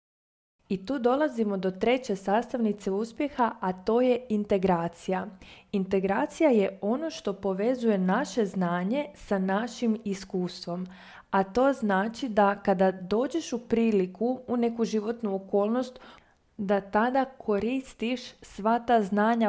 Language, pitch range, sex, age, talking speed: Croatian, 195-230 Hz, female, 20-39, 120 wpm